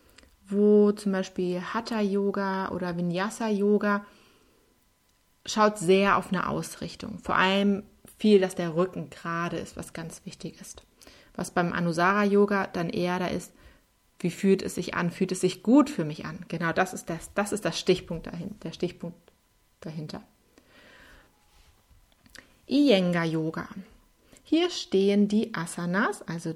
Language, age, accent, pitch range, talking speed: German, 30-49, German, 180-220 Hz, 135 wpm